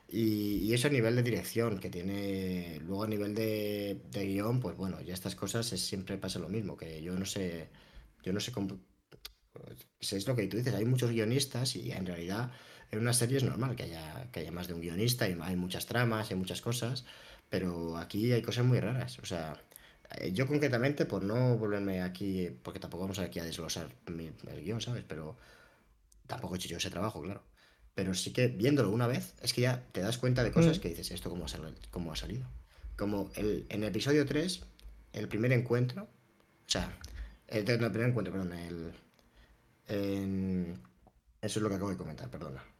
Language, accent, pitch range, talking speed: Spanish, Spanish, 90-120 Hz, 210 wpm